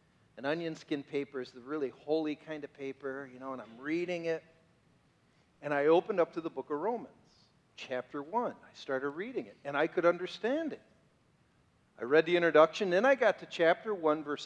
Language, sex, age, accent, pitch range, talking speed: English, male, 50-69, American, 145-190 Hz, 200 wpm